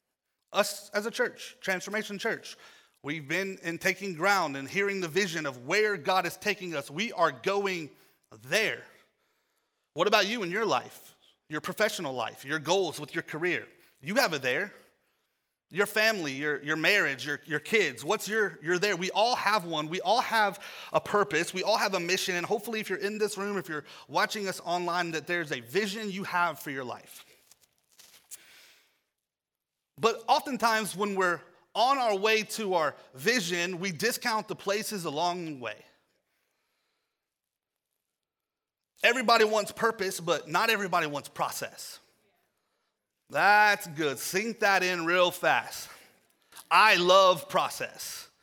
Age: 30-49